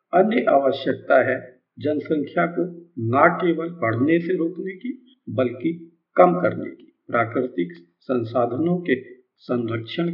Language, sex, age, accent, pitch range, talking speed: Hindi, male, 50-69, native, 120-175 Hz, 110 wpm